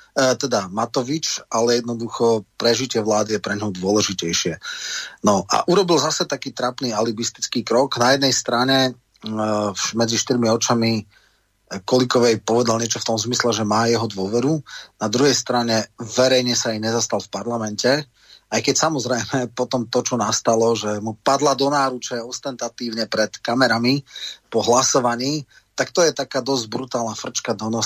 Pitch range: 110-130 Hz